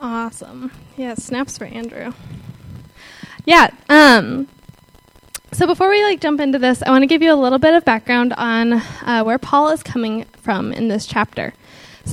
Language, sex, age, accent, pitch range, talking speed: English, female, 10-29, American, 225-275 Hz, 175 wpm